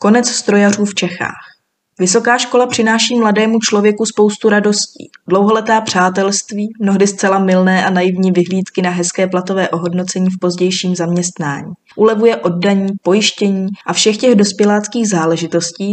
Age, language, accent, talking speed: 20-39, Czech, native, 130 wpm